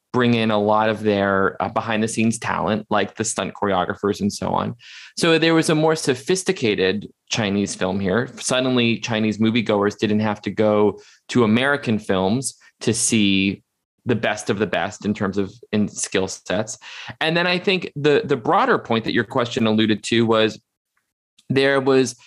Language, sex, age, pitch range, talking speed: English, male, 20-39, 105-125 Hz, 170 wpm